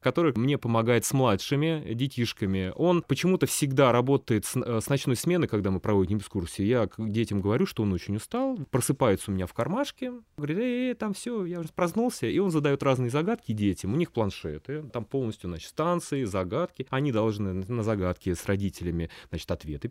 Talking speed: 180 wpm